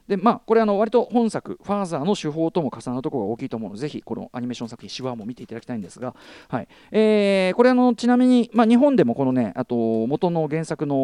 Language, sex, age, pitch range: Japanese, male, 40-59, 135-225 Hz